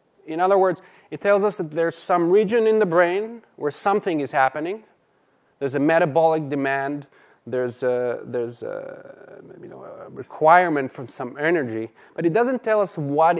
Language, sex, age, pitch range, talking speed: English, male, 30-49, 135-180 Hz, 155 wpm